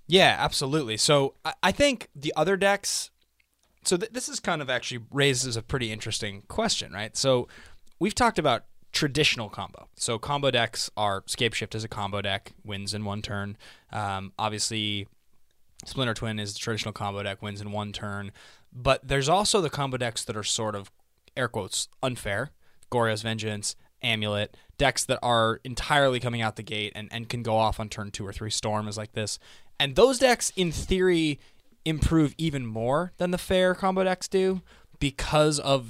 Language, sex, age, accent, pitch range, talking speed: English, male, 20-39, American, 110-140 Hz, 180 wpm